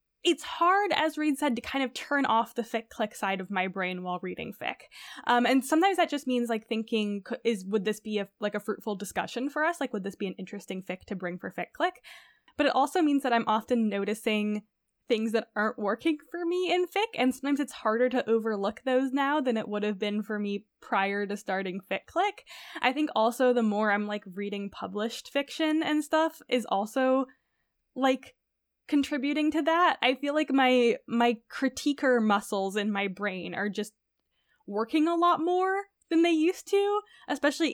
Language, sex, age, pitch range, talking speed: English, female, 10-29, 210-305 Hz, 195 wpm